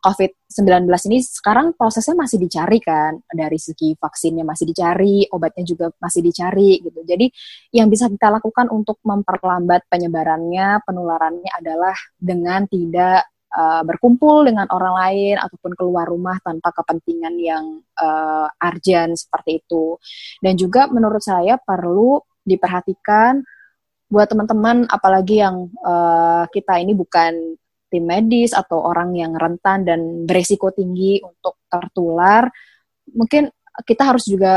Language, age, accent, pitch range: Indonesian, 20-39, native, 170-205 Hz